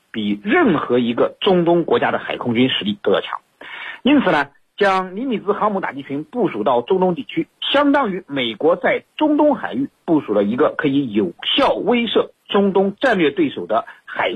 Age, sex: 50-69, male